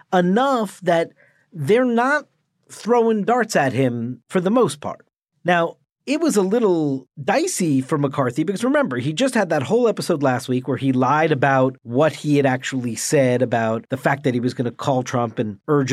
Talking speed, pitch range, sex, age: 190 wpm, 130-180 Hz, male, 40-59